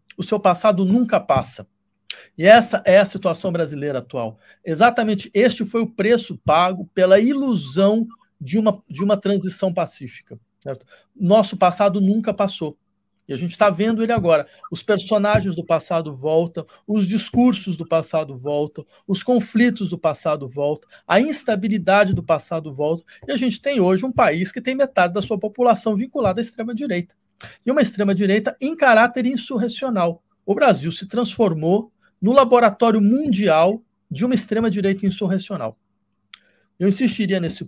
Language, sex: Portuguese, male